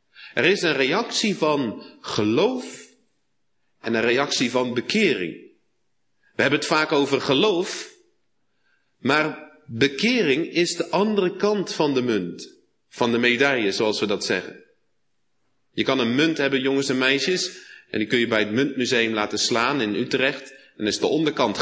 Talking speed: 155 wpm